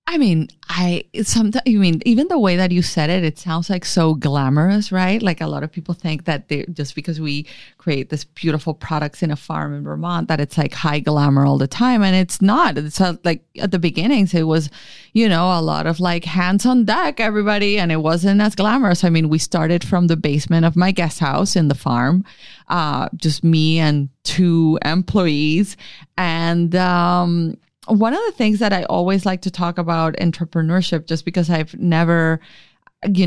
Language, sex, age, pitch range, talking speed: English, female, 30-49, 155-190 Hz, 200 wpm